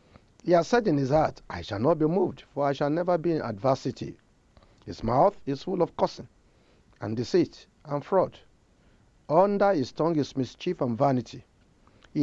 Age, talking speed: 50-69, 175 wpm